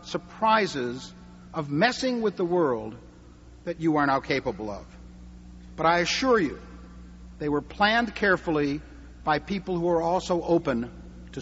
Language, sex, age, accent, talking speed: English, male, 60-79, American, 140 wpm